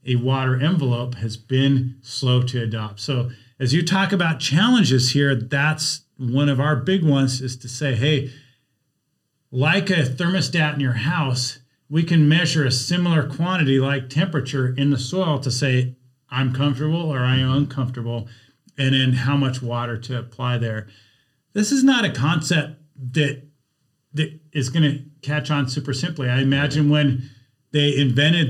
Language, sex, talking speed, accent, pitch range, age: English, male, 160 wpm, American, 130-155 Hz, 40-59